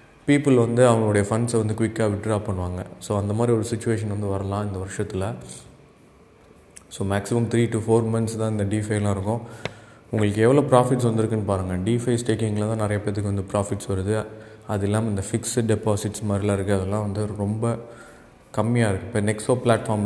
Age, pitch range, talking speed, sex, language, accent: 20-39, 105-115 Hz, 160 wpm, male, Tamil, native